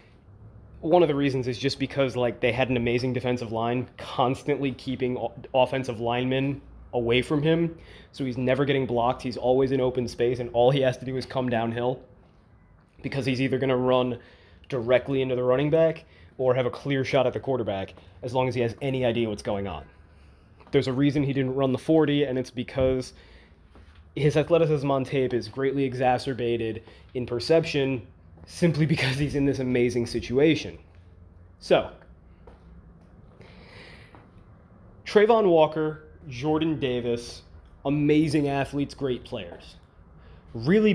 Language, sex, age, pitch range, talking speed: English, male, 20-39, 100-140 Hz, 155 wpm